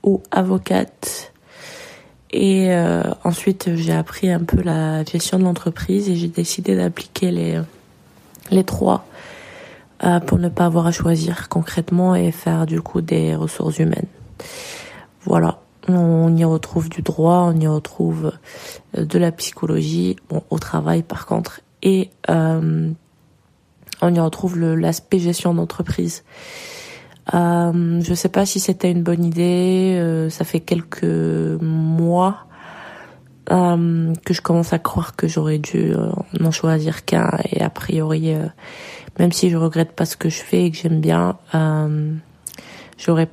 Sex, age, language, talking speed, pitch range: female, 20-39, French, 150 wpm, 155-180 Hz